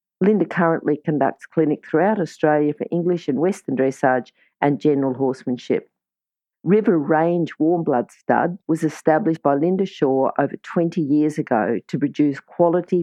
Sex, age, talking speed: female, 50-69, 145 wpm